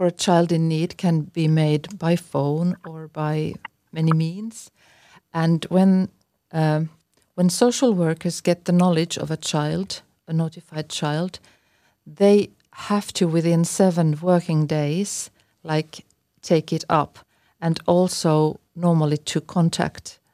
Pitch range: 155-180 Hz